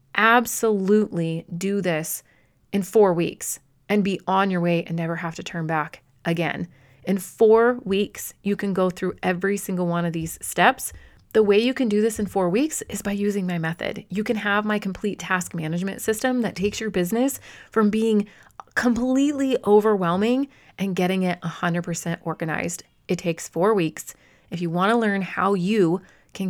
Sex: female